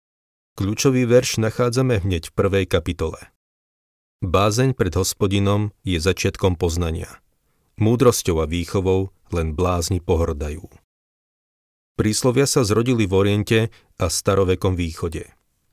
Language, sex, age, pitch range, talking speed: Slovak, male, 40-59, 90-105 Hz, 105 wpm